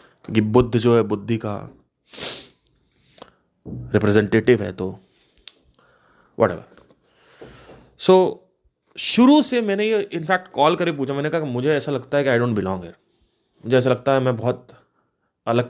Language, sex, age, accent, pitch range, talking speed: Hindi, male, 30-49, native, 110-145 Hz, 140 wpm